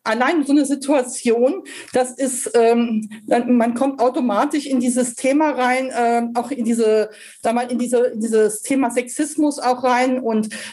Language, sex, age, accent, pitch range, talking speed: German, female, 40-59, German, 230-275 Hz, 155 wpm